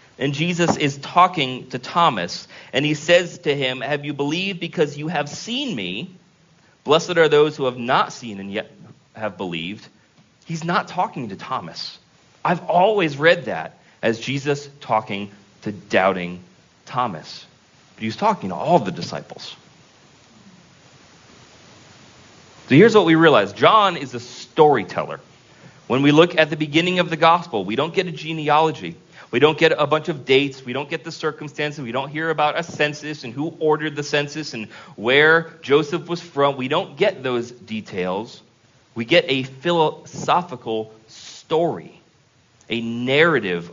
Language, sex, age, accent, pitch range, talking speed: English, male, 30-49, American, 120-160 Hz, 155 wpm